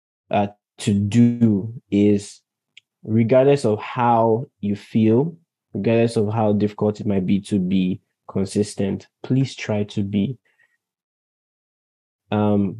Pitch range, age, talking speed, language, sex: 105-125 Hz, 20-39, 115 wpm, English, male